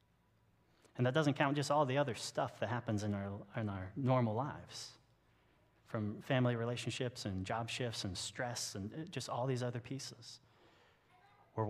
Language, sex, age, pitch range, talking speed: English, male, 30-49, 105-125 Hz, 165 wpm